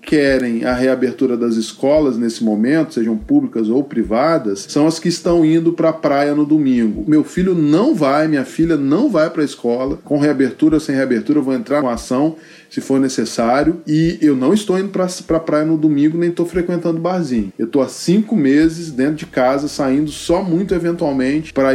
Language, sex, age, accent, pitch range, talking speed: Portuguese, male, 20-39, Brazilian, 135-170 Hz, 200 wpm